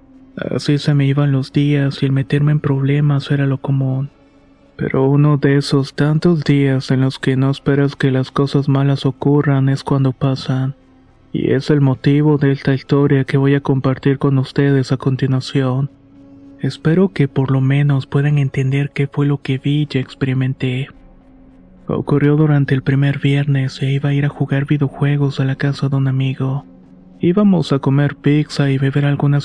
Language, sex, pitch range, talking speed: Spanish, male, 135-145 Hz, 175 wpm